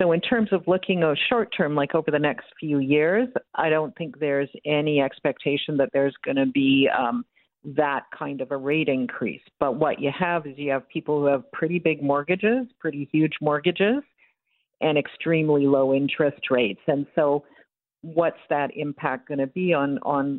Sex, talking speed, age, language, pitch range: female, 175 wpm, 50-69, English, 140-185 Hz